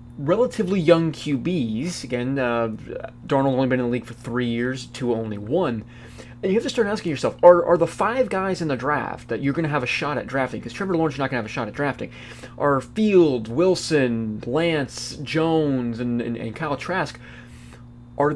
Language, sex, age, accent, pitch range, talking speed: English, male, 30-49, American, 120-165 Hz, 205 wpm